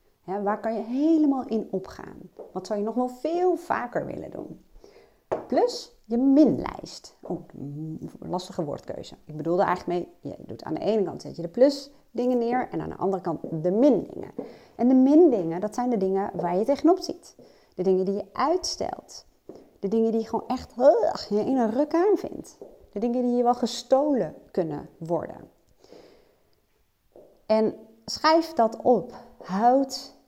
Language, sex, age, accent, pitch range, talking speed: Dutch, female, 30-49, Dutch, 185-270 Hz, 180 wpm